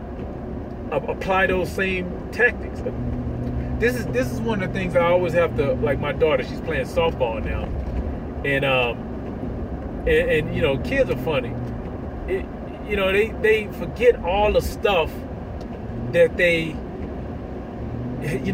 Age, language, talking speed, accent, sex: 30-49, English, 140 wpm, American, male